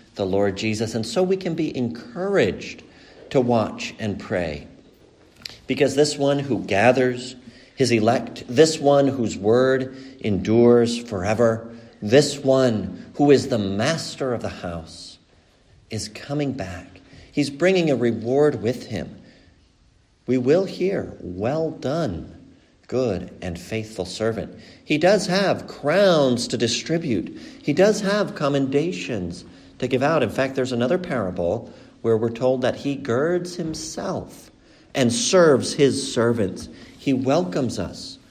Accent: American